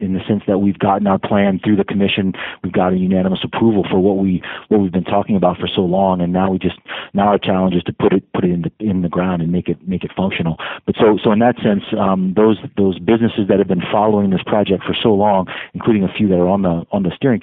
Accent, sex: American, male